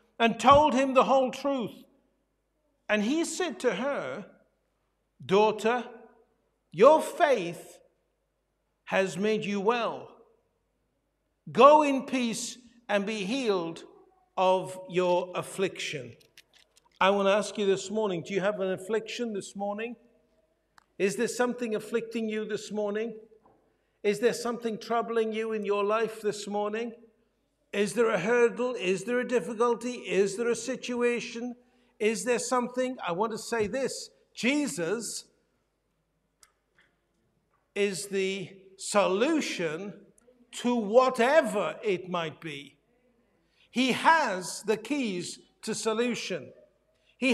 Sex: male